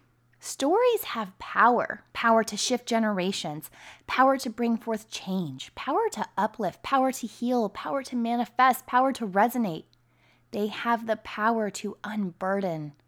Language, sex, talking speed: English, female, 140 wpm